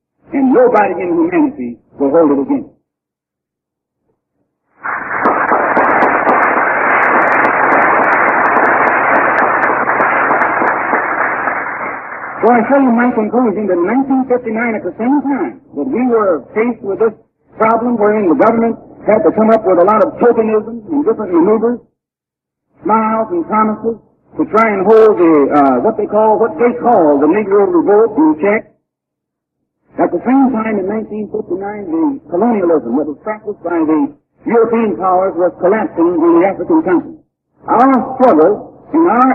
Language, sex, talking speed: English, male, 135 wpm